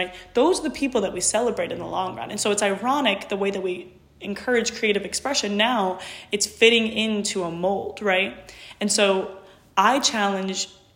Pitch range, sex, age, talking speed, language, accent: 180-205 Hz, female, 20-39, 185 wpm, English, American